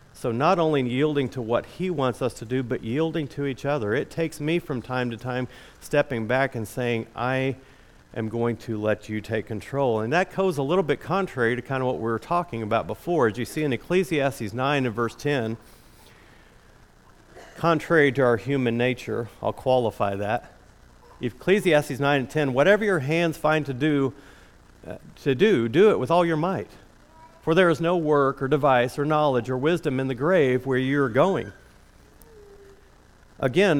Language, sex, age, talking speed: English, male, 50-69, 185 wpm